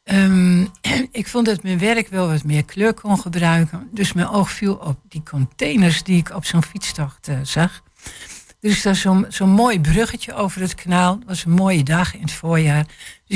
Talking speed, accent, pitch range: 200 wpm, Dutch, 155-200 Hz